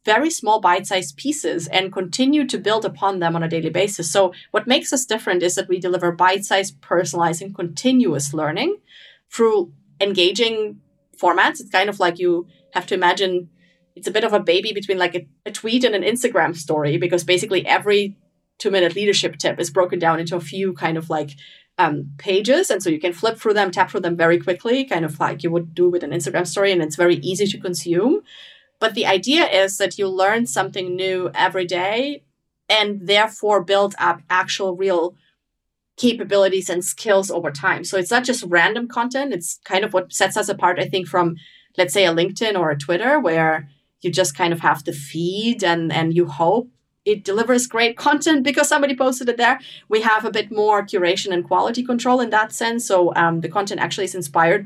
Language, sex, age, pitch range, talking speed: English, female, 30-49, 175-215 Hz, 200 wpm